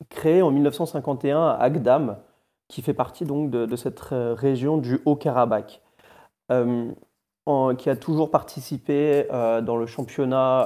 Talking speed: 140 wpm